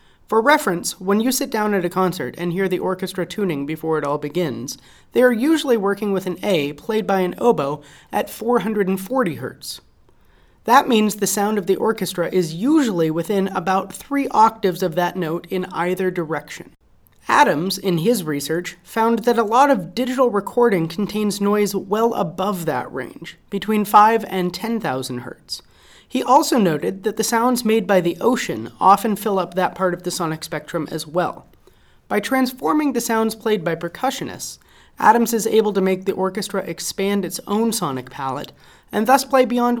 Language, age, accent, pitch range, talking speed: English, 30-49, American, 170-225 Hz, 175 wpm